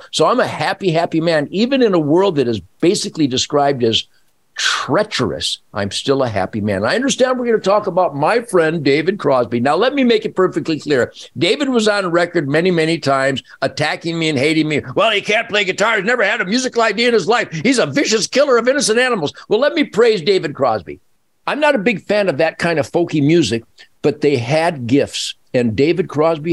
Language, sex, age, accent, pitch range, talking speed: English, male, 60-79, American, 125-185 Hz, 215 wpm